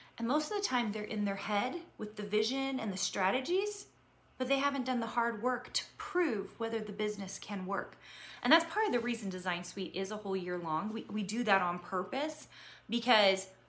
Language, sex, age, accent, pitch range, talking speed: English, female, 30-49, American, 190-245 Hz, 215 wpm